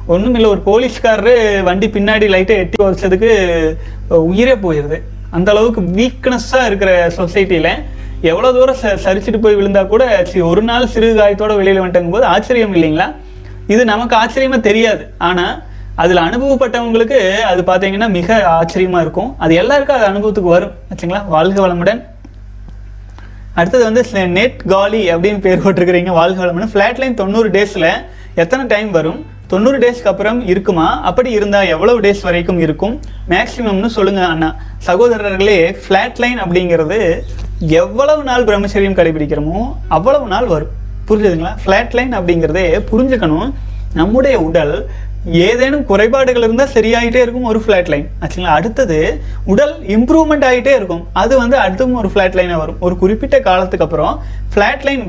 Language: Tamil